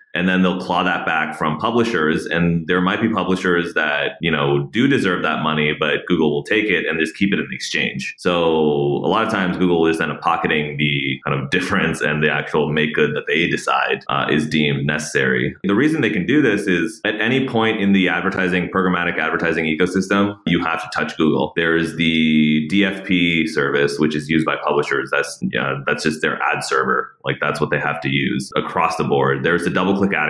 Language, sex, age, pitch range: English, male, 30-49, 75-95 Hz